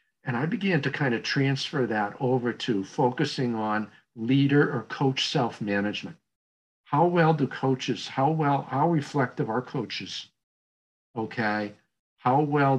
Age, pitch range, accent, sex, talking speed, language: 50-69, 105-135 Hz, American, male, 135 wpm, English